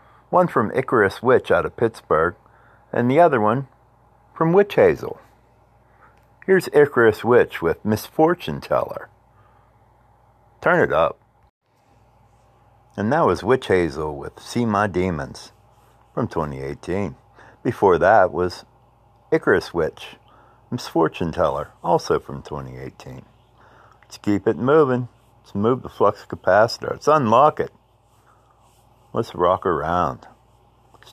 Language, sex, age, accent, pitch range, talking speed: English, male, 50-69, American, 110-120 Hz, 115 wpm